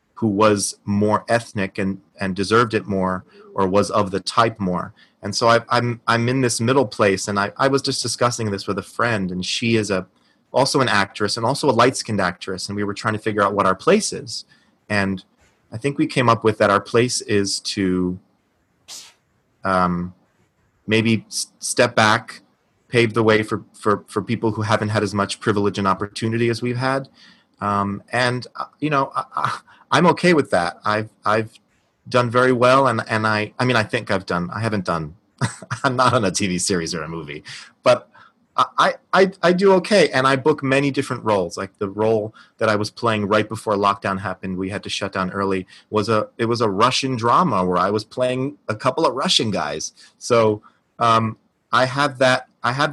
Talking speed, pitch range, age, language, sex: 205 wpm, 100-120 Hz, 30-49, English, male